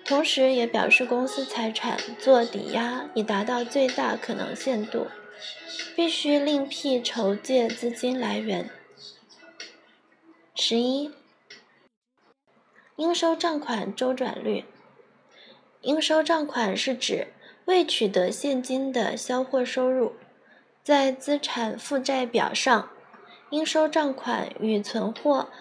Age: 20-39